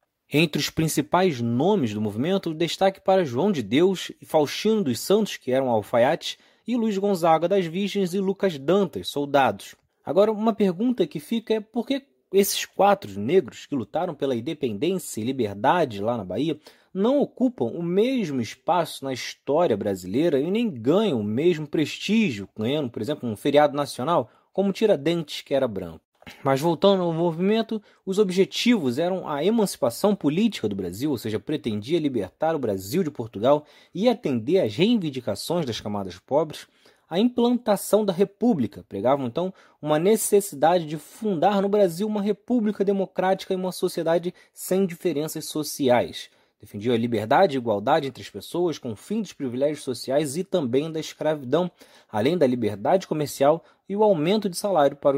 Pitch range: 140-200 Hz